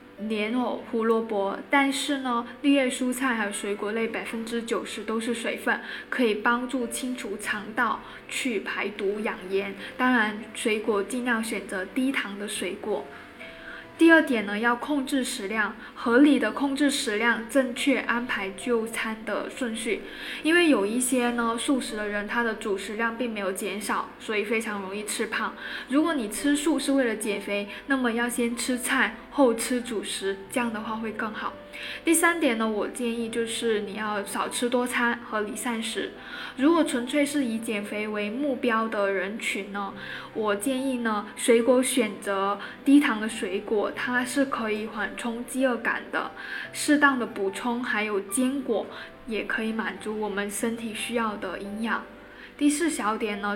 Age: 10-29